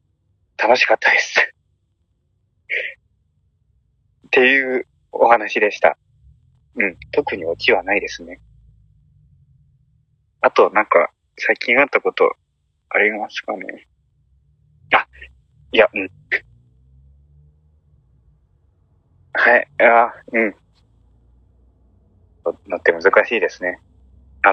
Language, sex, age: Japanese, male, 30-49